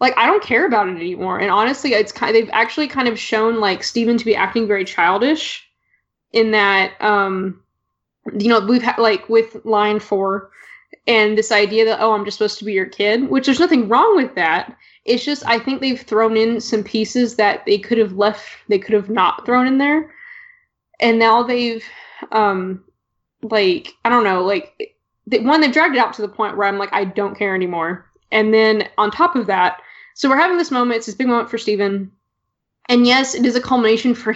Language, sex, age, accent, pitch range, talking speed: English, female, 20-39, American, 205-245 Hz, 215 wpm